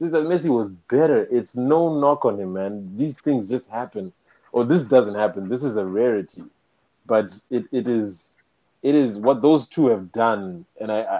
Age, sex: 20-39, male